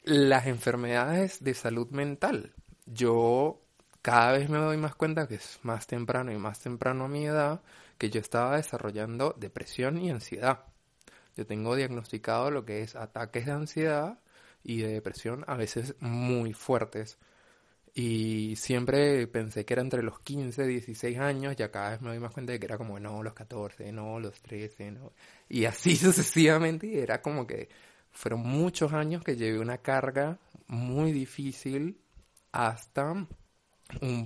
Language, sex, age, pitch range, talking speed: Spanish, male, 20-39, 115-145 Hz, 160 wpm